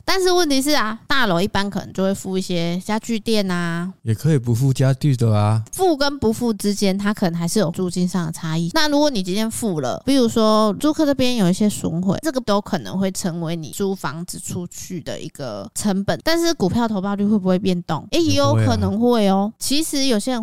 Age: 20-39